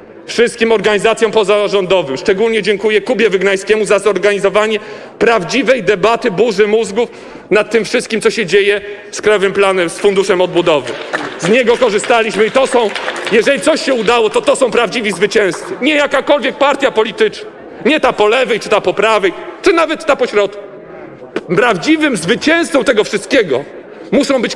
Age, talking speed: 40-59, 150 wpm